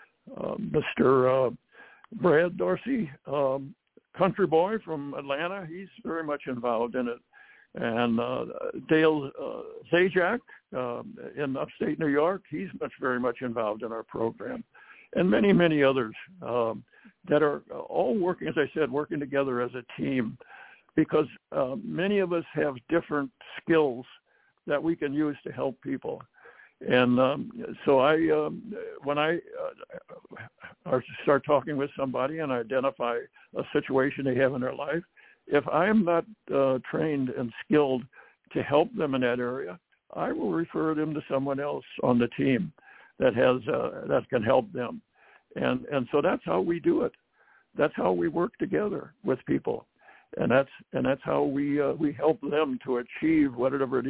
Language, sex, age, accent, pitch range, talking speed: English, male, 60-79, American, 130-170 Hz, 165 wpm